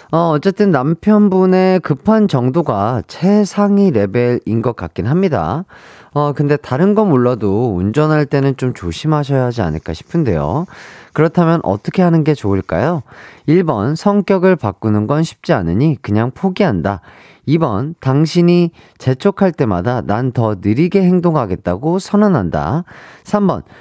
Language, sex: Korean, male